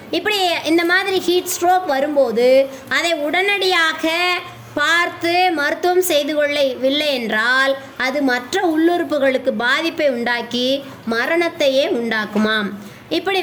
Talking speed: 95 wpm